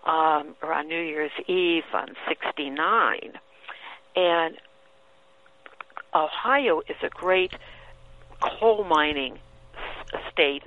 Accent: American